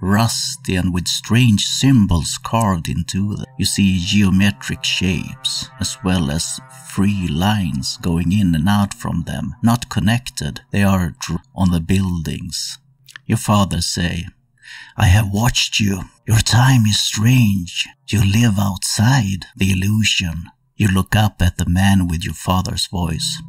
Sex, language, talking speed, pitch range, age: male, English, 145 wpm, 90-120 Hz, 50-69